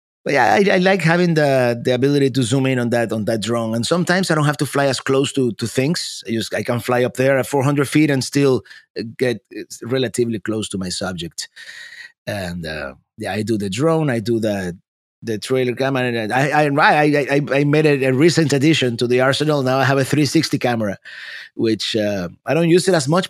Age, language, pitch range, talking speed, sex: 30-49, English, 115-150 Hz, 225 wpm, male